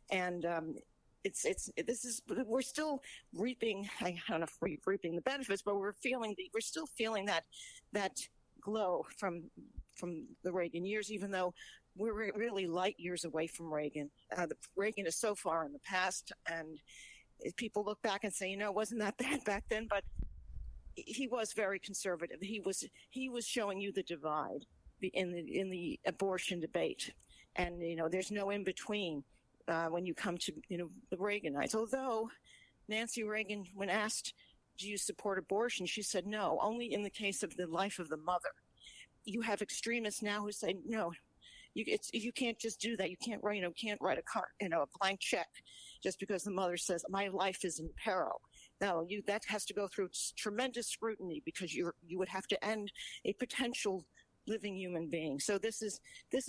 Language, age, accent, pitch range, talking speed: English, 50-69, American, 180-220 Hz, 195 wpm